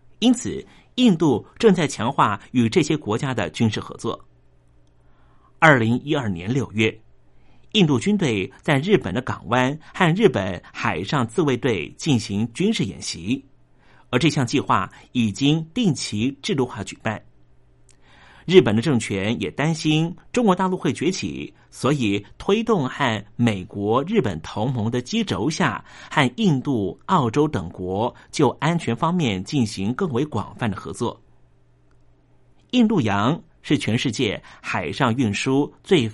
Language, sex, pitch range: Chinese, male, 110-160 Hz